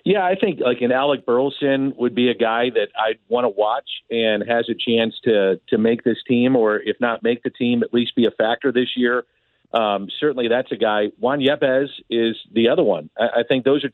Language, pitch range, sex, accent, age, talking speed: English, 115-135 Hz, male, American, 50-69, 230 wpm